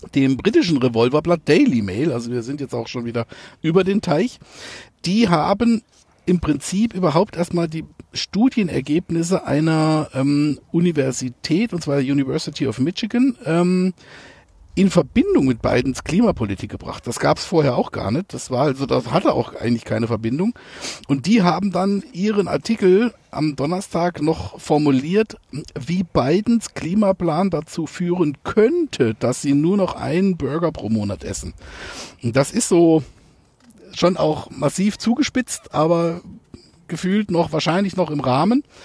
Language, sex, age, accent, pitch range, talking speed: German, male, 60-79, German, 135-185 Hz, 145 wpm